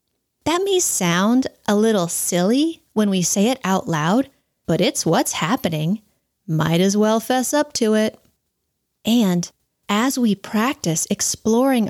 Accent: American